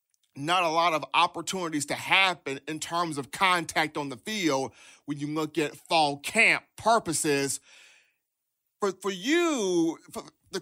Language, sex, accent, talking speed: English, male, American, 145 wpm